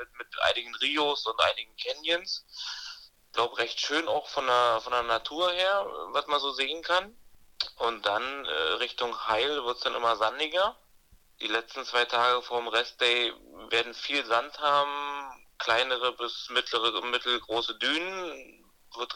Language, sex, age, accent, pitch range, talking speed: German, male, 30-49, German, 115-145 Hz, 155 wpm